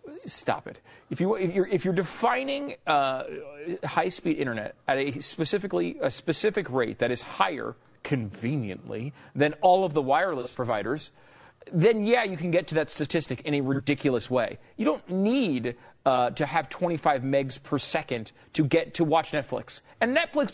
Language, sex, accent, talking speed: English, male, American, 170 wpm